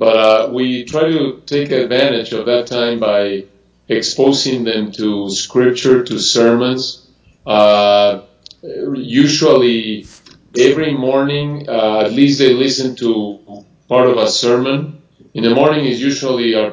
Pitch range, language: 105-125 Hz, English